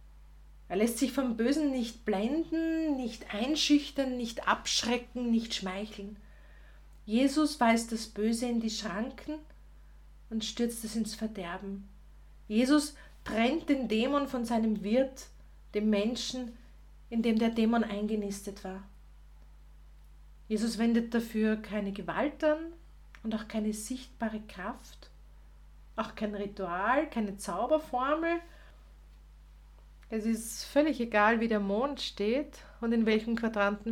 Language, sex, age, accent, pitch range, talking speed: German, female, 40-59, Austrian, 175-245 Hz, 120 wpm